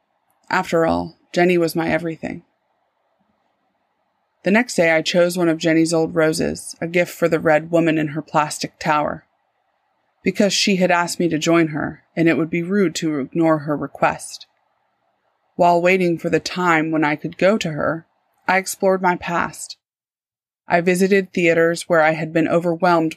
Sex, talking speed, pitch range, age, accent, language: female, 170 wpm, 160-180 Hz, 30-49, American, English